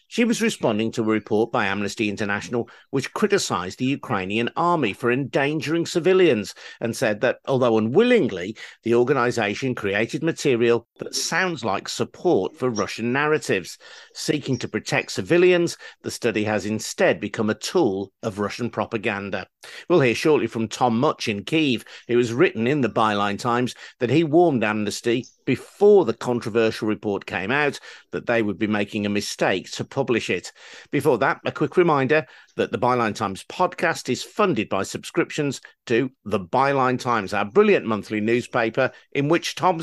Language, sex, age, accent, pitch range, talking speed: English, male, 50-69, British, 110-165 Hz, 160 wpm